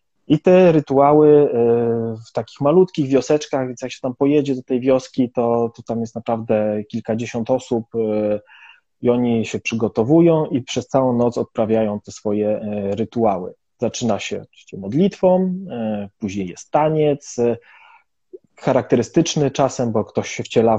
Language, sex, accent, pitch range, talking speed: Polish, male, native, 110-140 Hz, 135 wpm